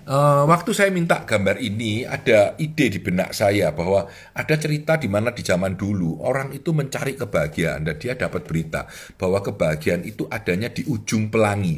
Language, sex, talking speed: Indonesian, male, 170 wpm